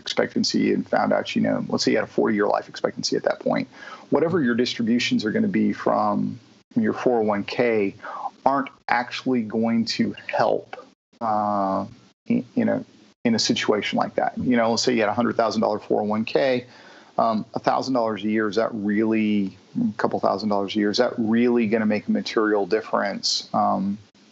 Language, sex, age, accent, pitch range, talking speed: English, male, 40-59, American, 110-135 Hz, 180 wpm